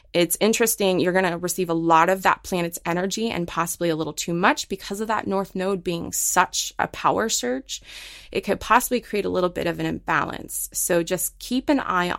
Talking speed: 210 wpm